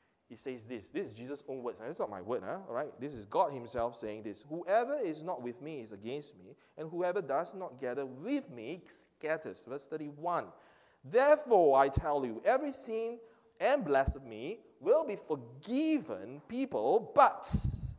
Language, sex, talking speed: English, male, 175 wpm